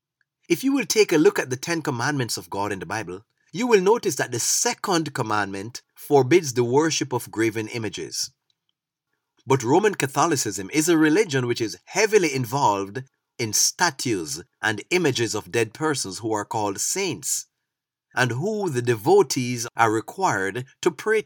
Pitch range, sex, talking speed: 110-155 Hz, male, 160 wpm